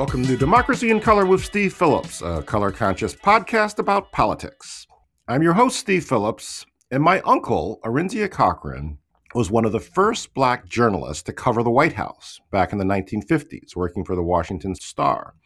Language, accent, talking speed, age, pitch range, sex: English, American, 175 wpm, 40-59, 85-140 Hz, male